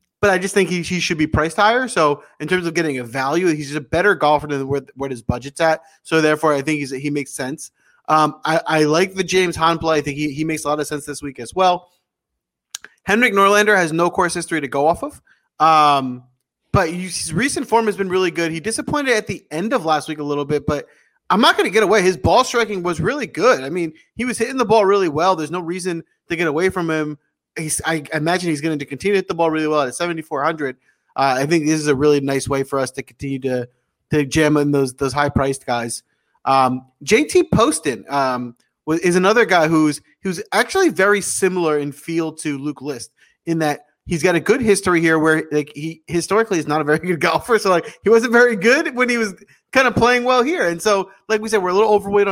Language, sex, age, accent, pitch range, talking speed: English, male, 20-39, American, 145-195 Hz, 245 wpm